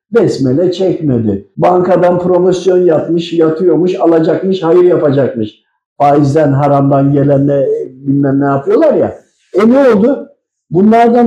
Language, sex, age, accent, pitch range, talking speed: Turkish, male, 50-69, native, 160-215 Hz, 105 wpm